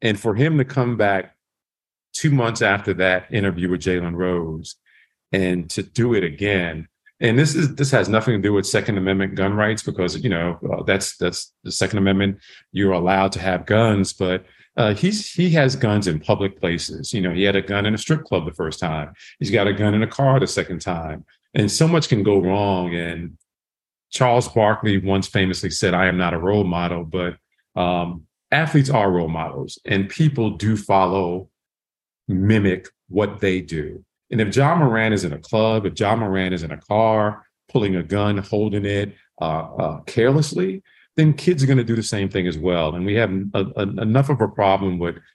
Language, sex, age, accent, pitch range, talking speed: English, male, 40-59, American, 90-110 Hz, 200 wpm